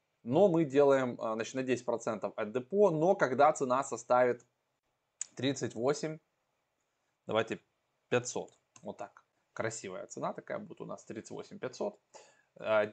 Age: 20-39